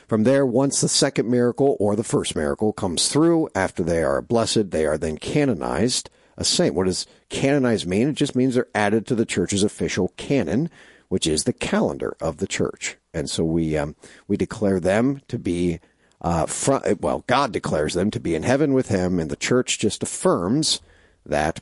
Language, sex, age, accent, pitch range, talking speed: English, male, 50-69, American, 95-135 Hz, 195 wpm